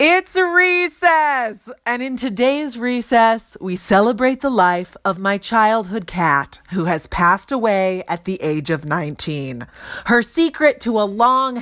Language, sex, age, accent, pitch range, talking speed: English, female, 30-49, American, 185-280 Hz, 145 wpm